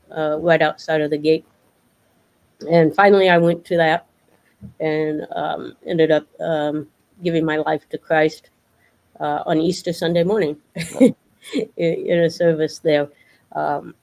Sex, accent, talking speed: female, American, 140 wpm